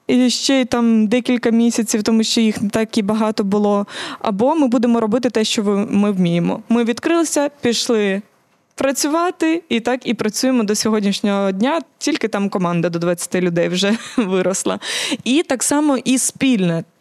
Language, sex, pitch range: Ukrainian, female, 200-250 Hz